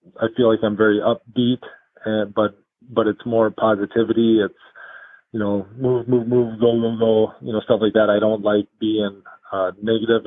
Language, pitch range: English, 105-115 Hz